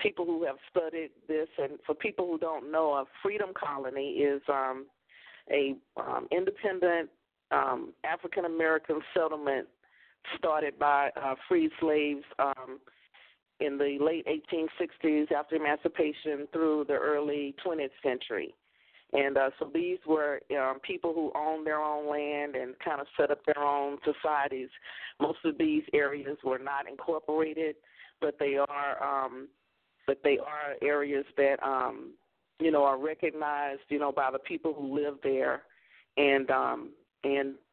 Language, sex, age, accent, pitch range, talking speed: English, female, 40-59, American, 140-160 Hz, 145 wpm